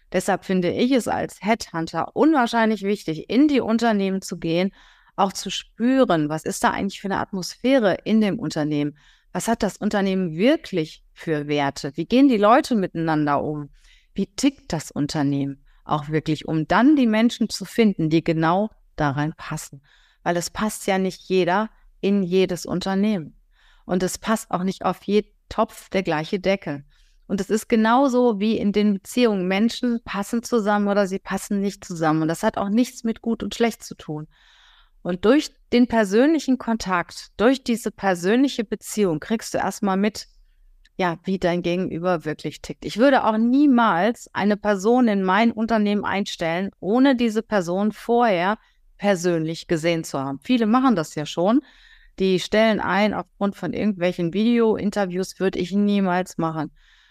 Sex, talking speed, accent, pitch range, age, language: female, 165 wpm, German, 170-225 Hz, 30-49, German